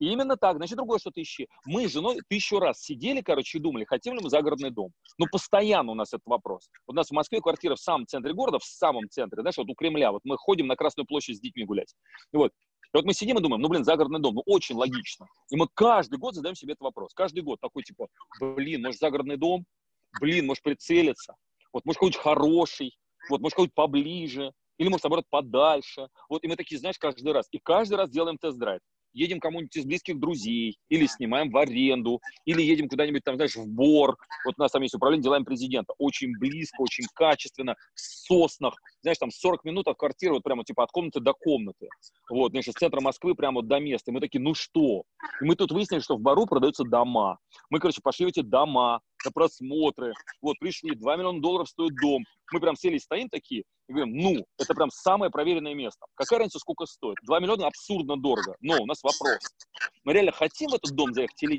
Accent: native